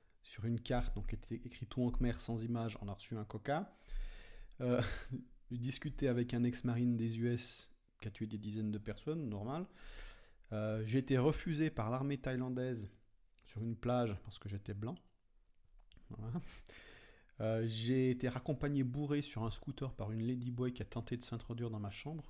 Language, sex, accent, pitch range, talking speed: French, male, French, 105-125 Hz, 180 wpm